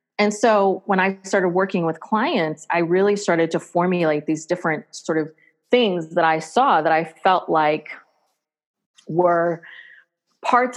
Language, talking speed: English, 150 wpm